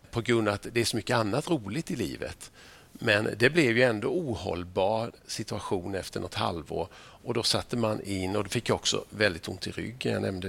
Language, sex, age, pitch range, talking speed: Swedish, male, 50-69, 100-125 Hz, 215 wpm